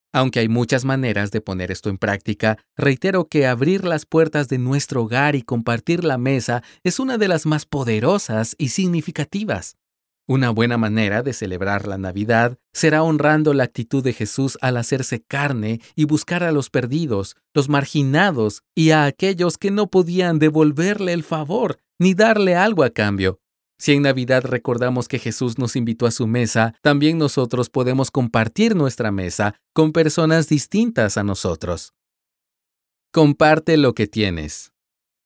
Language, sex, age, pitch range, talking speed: Spanish, male, 40-59, 110-155 Hz, 155 wpm